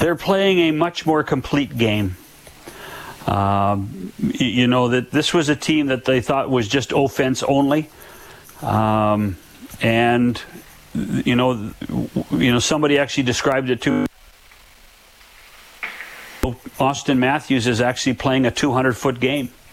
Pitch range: 120-140 Hz